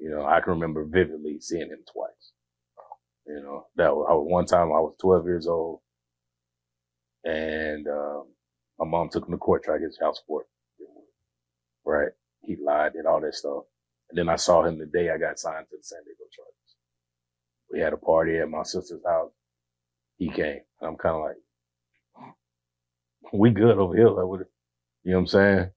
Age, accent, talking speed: 30-49, American, 190 wpm